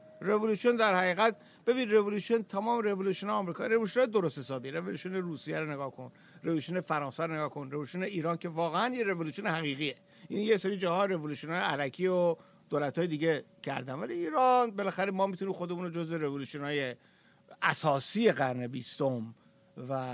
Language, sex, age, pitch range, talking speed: Persian, male, 60-79, 145-210 Hz, 160 wpm